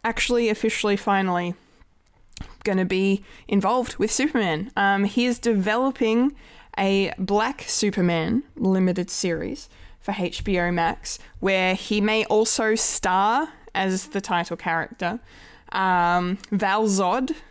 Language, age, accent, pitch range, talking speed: English, 20-39, Australian, 180-210 Hz, 115 wpm